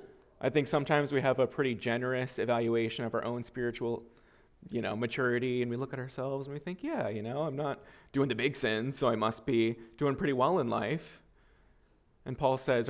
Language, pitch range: English, 120-160 Hz